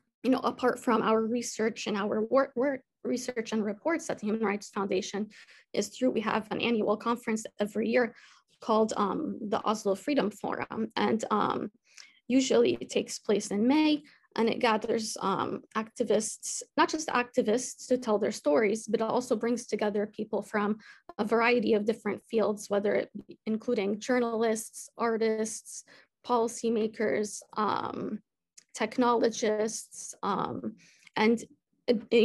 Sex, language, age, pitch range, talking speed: female, English, 20-39, 210-245 Hz, 145 wpm